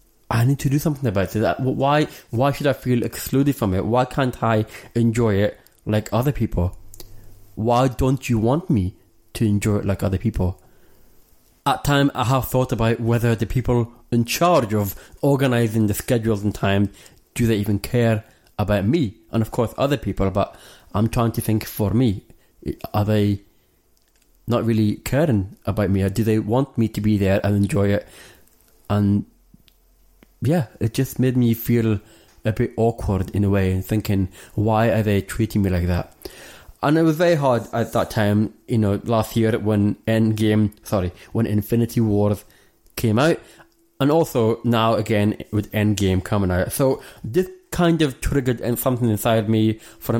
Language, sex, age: English, male, 30-49